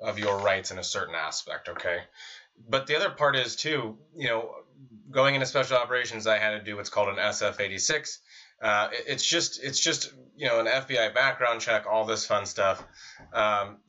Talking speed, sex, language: 200 wpm, male, English